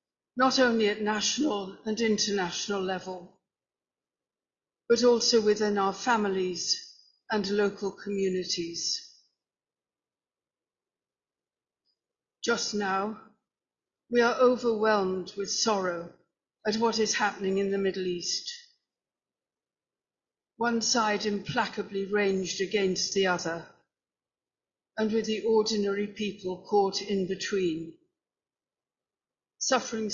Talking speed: 90 wpm